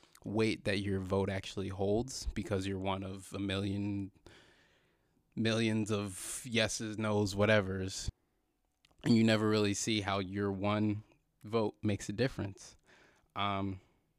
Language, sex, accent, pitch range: English, male, American, 95-110 Hz